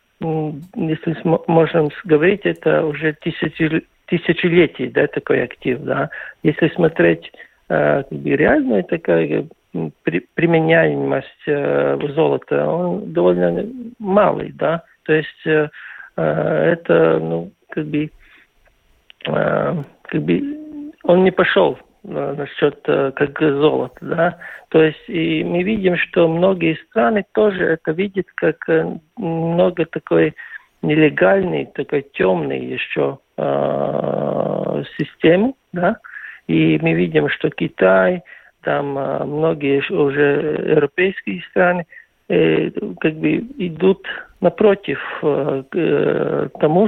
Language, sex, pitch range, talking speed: Russian, male, 145-180 Hz, 95 wpm